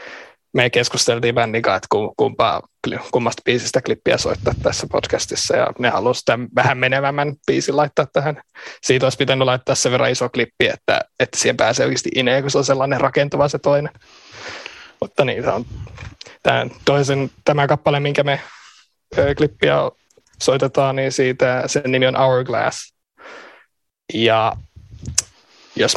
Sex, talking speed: male, 140 wpm